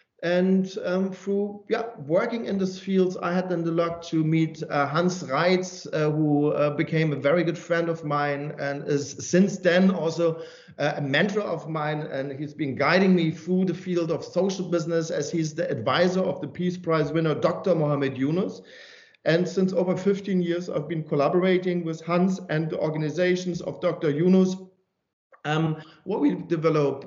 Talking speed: 175 wpm